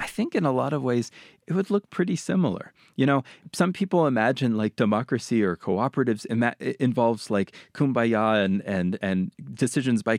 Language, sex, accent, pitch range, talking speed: English, male, American, 105-140 Hz, 185 wpm